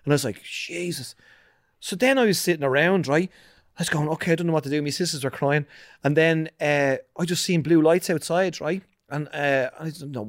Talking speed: 240 wpm